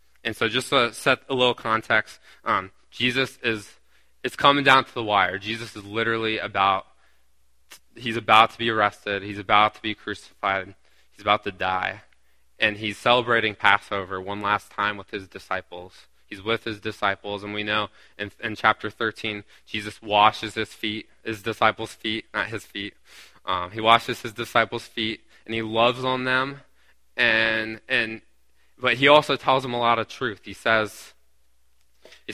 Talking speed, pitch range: 170 wpm, 100-120 Hz